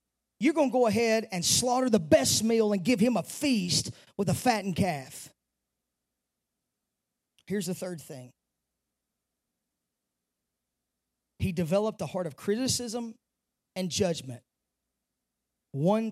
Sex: male